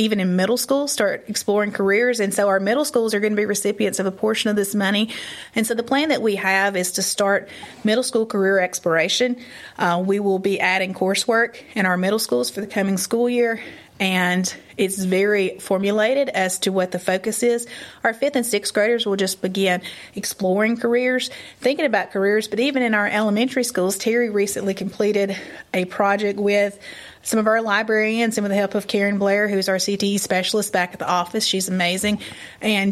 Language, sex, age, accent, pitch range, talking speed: English, female, 30-49, American, 190-225 Hz, 200 wpm